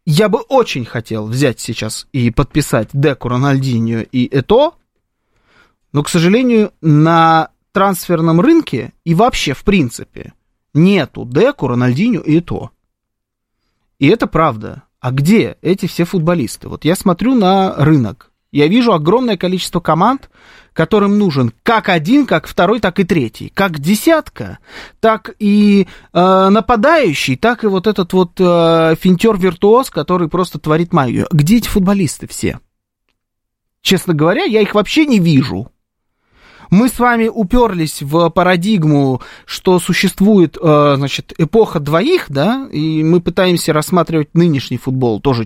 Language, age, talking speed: Russian, 20-39, 135 wpm